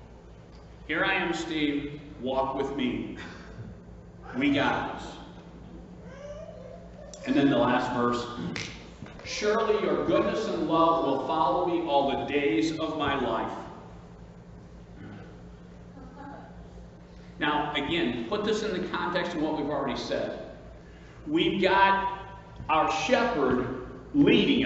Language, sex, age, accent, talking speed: English, male, 50-69, American, 110 wpm